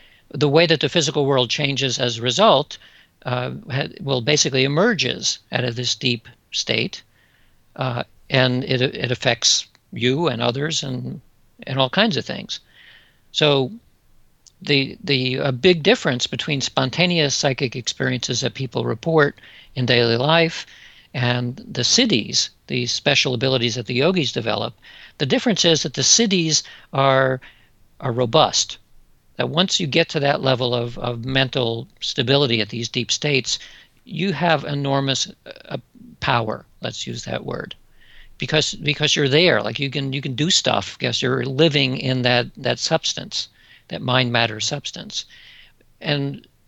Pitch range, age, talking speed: 125-155 Hz, 50-69, 145 wpm